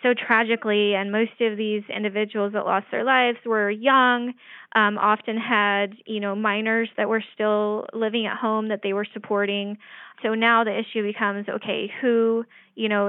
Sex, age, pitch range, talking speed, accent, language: female, 20-39, 195-220 Hz, 175 wpm, American, English